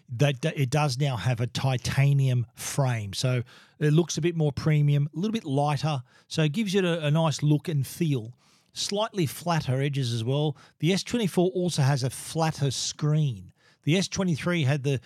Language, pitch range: English, 130-160 Hz